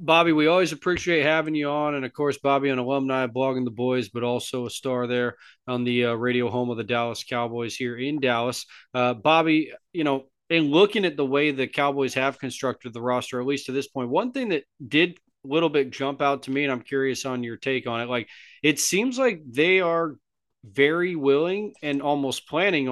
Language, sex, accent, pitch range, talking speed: English, male, American, 125-150 Hz, 215 wpm